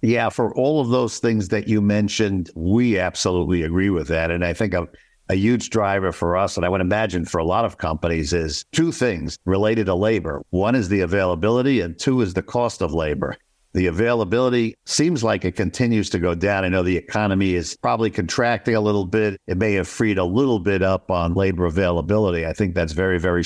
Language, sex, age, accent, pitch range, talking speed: English, male, 60-79, American, 90-105 Hz, 215 wpm